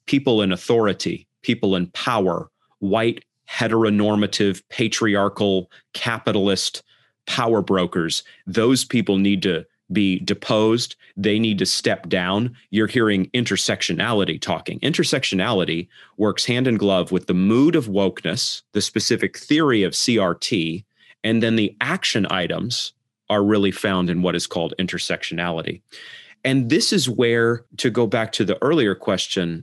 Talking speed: 135 wpm